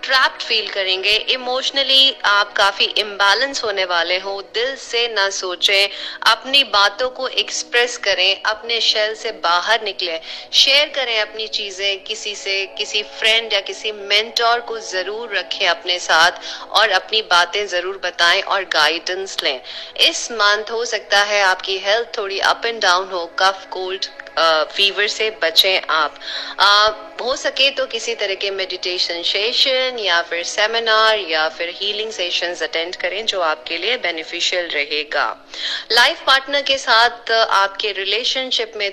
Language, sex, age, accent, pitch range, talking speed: Hindi, female, 30-49, native, 185-245 Hz, 150 wpm